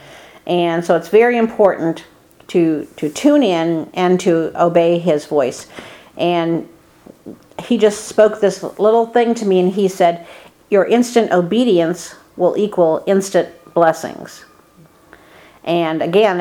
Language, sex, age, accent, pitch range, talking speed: English, female, 50-69, American, 165-195 Hz, 130 wpm